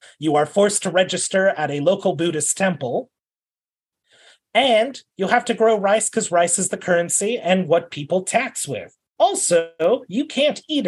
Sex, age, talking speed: male, 30-49, 165 wpm